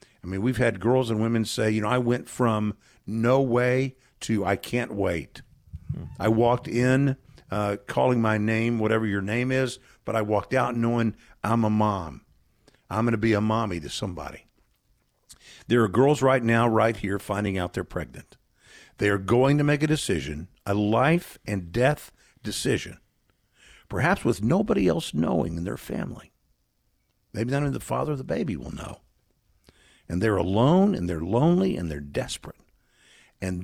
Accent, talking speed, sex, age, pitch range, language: American, 175 wpm, male, 50-69, 105-125 Hz, English